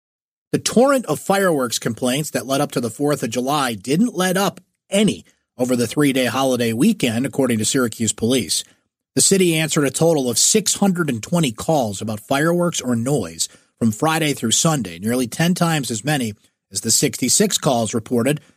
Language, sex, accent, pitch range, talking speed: English, male, American, 120-165 Hz, 170 wpm